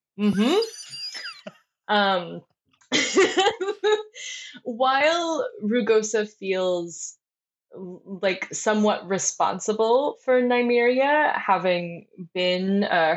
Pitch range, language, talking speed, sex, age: 185-245 Hz, English, 60 wpm, female, 20-39